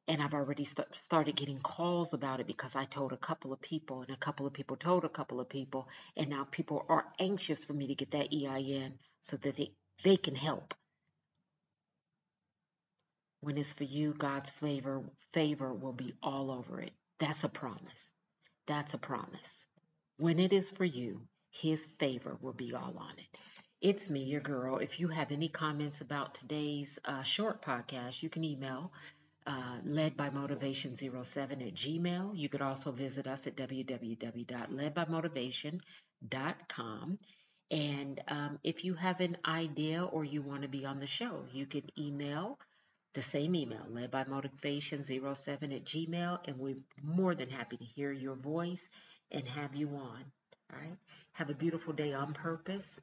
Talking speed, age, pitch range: 170 wpm, 40-59, 135-165 Hz